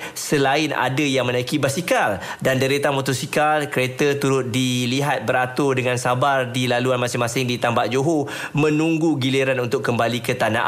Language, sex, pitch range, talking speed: Malay, male, 125-145 Hz, 145 wpm